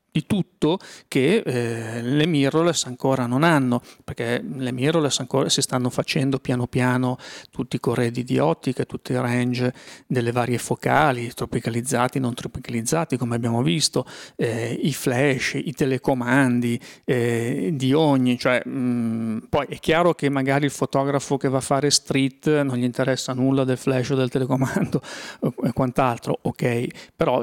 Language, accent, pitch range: Italian, native, 125-145 Hz